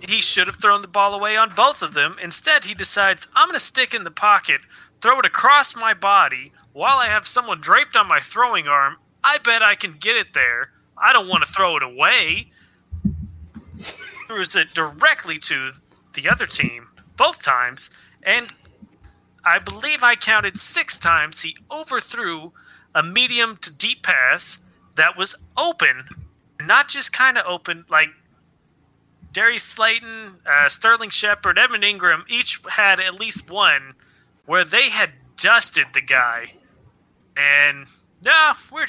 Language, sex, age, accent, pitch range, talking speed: English, male, 30-49, American, 155-240 Hz, 155 wpm